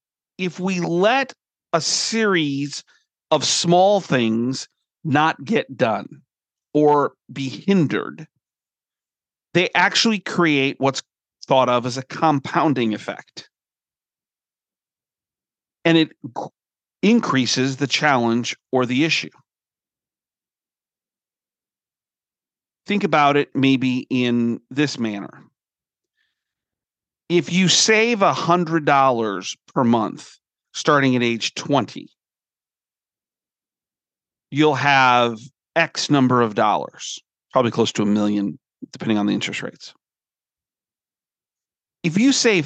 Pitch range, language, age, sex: 130-175 Hz, English, 40-59, male